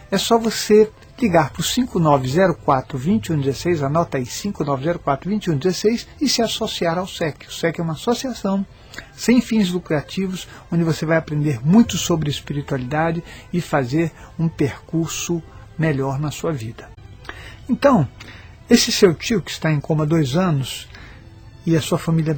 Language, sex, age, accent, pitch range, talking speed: Portuguese, male, 60-79, Brazilian, 150-215 Hz, 140 wpm